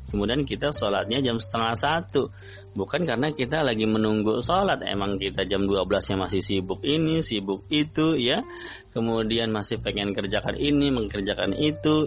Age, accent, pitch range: 20-39, native, 100-135 Hz